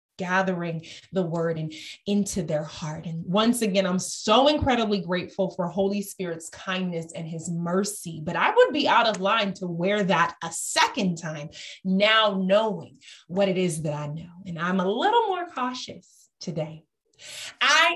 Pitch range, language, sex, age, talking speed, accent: 180-255 Hz, English, female, 30-49, 165 wpm, American